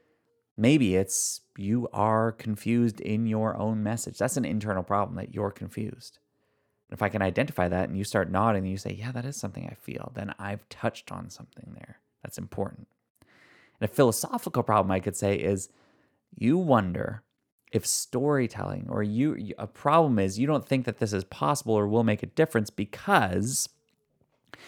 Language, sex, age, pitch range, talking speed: English, male, 30-49, 100-120 Hz, 175 wpm